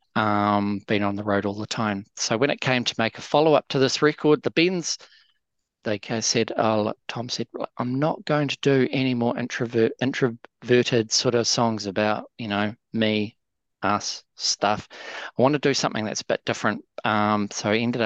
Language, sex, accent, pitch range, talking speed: English, male, Australian, 105-125 Hz, 190 wpm